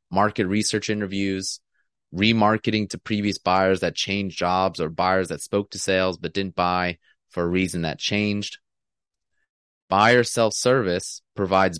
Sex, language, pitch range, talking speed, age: male, English, 90-105 Hz, 135 wpm, 30-49